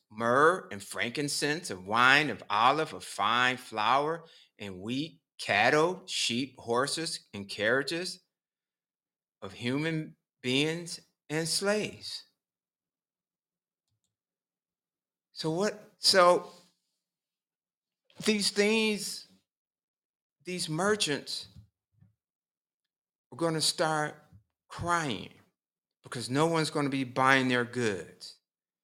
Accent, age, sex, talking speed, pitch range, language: American, 50-69, male, 90 wpm, 115-160 Hz, English